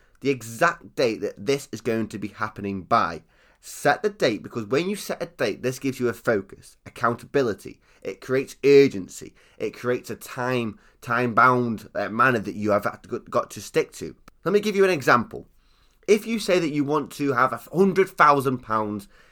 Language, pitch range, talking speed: English, 110-145 Hz, 175 wpm